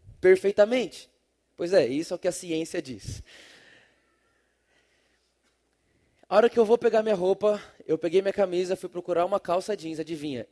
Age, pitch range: 20-39, 180-225 Hz